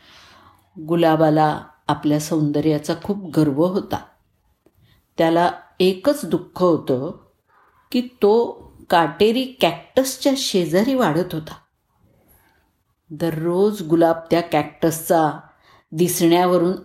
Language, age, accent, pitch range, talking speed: Marathi, 50-69, native, 150-185 Hz, 80 wpm